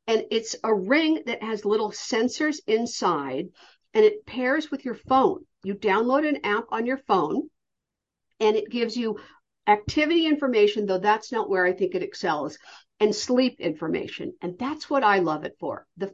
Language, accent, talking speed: English, American, 175 wpm